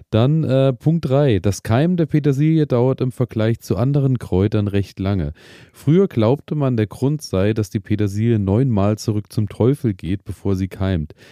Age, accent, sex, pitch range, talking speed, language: 30-49, German, male, 105-125 Hz, 175 wpm, German